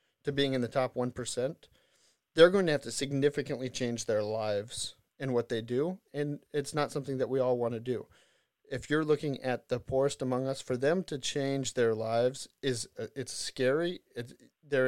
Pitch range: 120-140 Hz